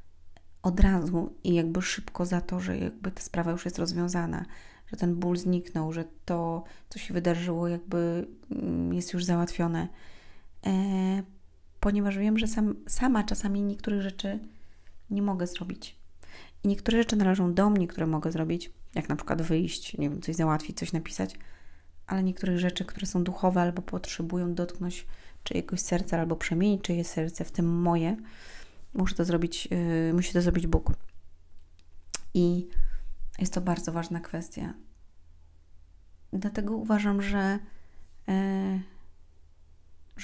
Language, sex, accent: Polish, female, native